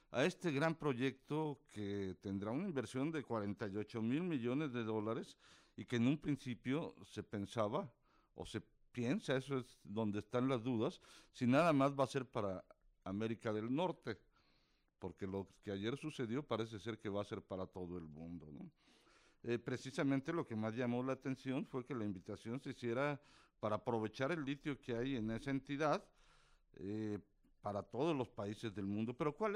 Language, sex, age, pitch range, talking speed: Spanish, male, 50-69, 105-135 Hz, 180 wpm